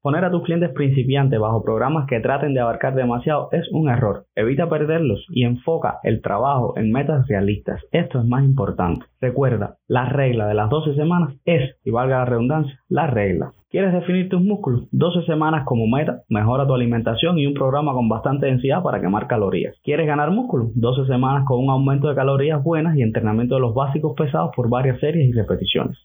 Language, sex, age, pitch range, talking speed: Spanish, male, 20-39, 120-155 Hz, 195 wpm